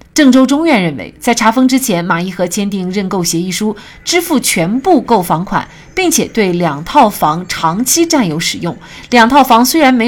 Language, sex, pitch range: Chinese, female, 175-270 Hz